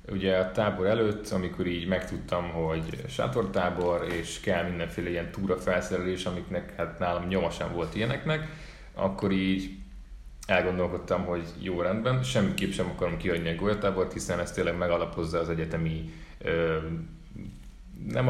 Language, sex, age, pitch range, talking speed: Hungarian, male, 30-49, 85-100 Hz, 130 wpm